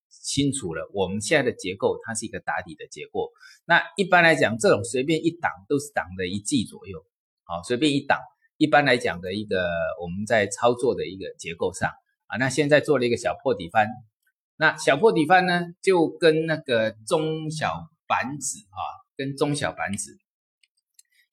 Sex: male